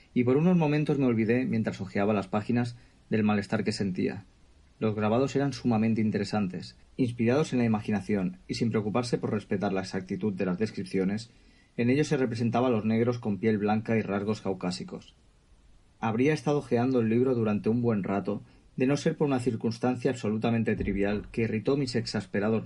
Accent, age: Spanish, 30-49